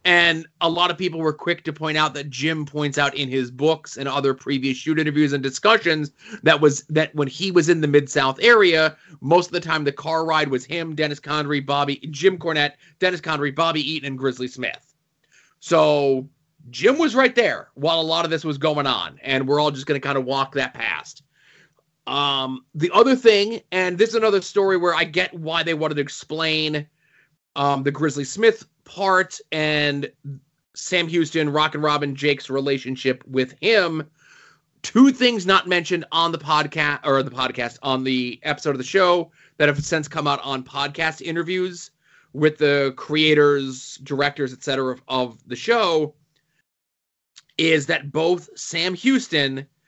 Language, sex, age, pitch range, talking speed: English, male, 30-49, 140-170 Hz, 180 wpm